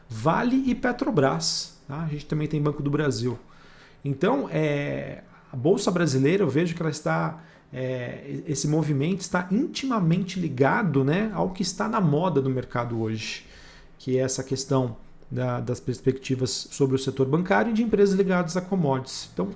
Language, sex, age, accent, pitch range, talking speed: Portuguese, male, 40-59, Brazilian, 135-180 Hz, 165 wpm